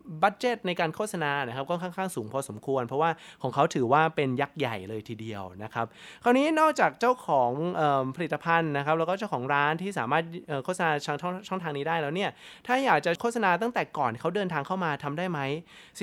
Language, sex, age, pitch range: Thai, male, 20-39, 140-195 Hz